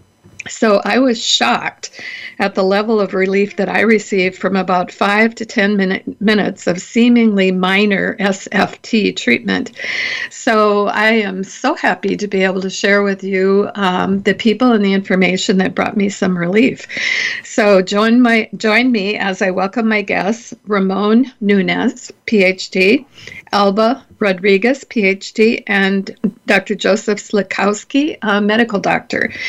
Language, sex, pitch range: English, female, 195-230 Hz